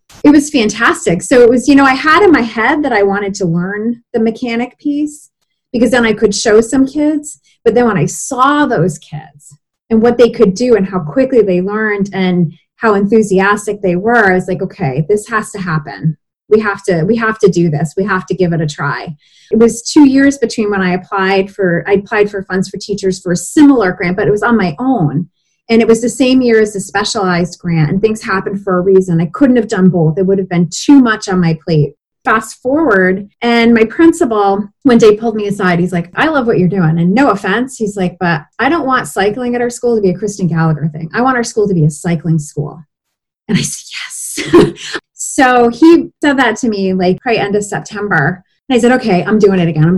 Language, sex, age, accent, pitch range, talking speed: English, female, 30-49, American, 185-235 Hz, 235 wpm